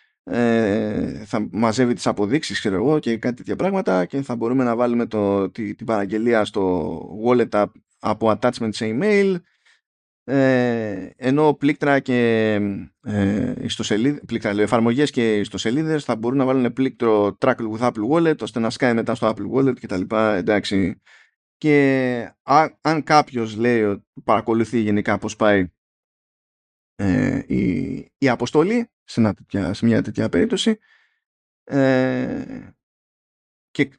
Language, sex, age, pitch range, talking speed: Greek, male, 20-39, 105-130 Hz, 140 wpm